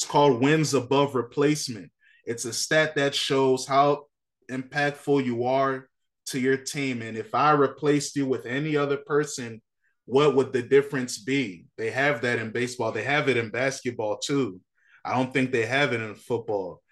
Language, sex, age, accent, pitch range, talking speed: English, male, 20-39, American, 115-140 Hz, 175 wpm